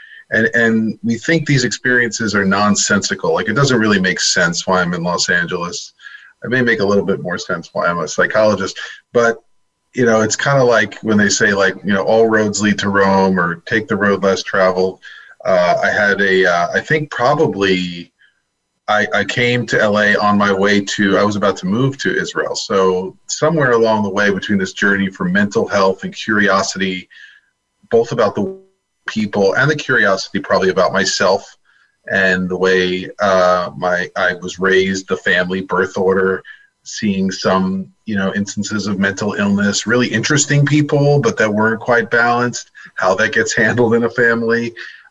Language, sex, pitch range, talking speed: English, male, 95-115 Hz, 185 wpm